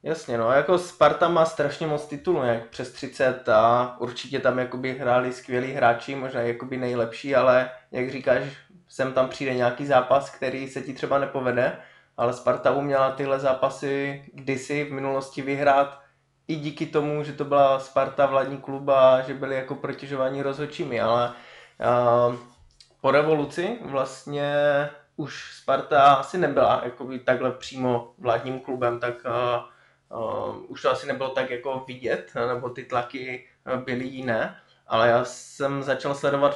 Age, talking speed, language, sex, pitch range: 20-39, 150 wpm, Czech, male, 125-145 Hz